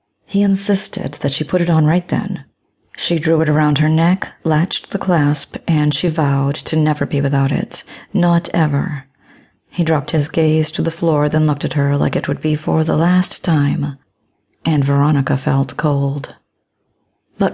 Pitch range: 140-170 Hz